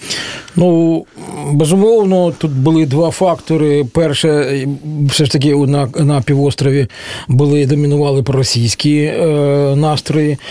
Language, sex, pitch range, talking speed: Russian, male, 140-170 Hz, 105 wpm